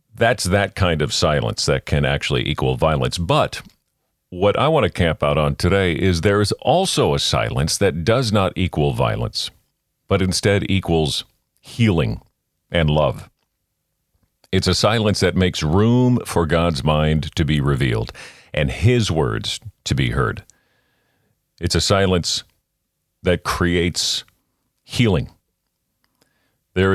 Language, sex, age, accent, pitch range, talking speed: English, male, 50-69, American, 85-105 Hz, 135 wpm